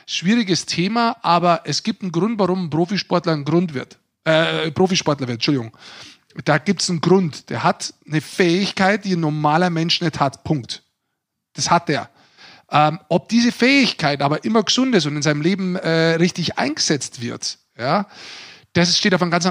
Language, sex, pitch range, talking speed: German, male, 135-180 Hz, 180 wpm